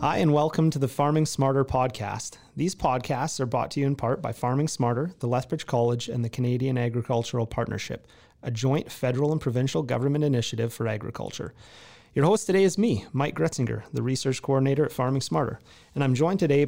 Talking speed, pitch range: 190 wpm, 125-155 Hz